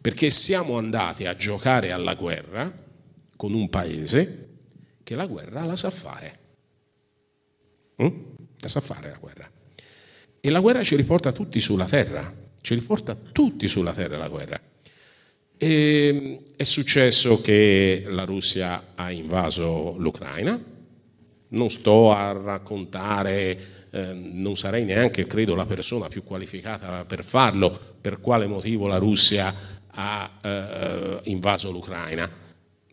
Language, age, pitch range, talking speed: Italian, 50-69, 95-125 Hz, 125 wpm